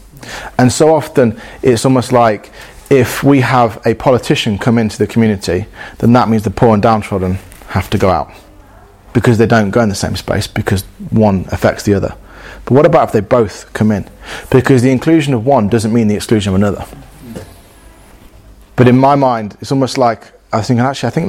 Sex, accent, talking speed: male, British, 200 wpm